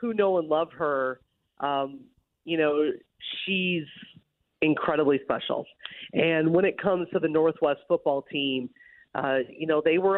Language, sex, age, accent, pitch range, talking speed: English, female, 30-49, American, 145-180 Hz, 145 wpm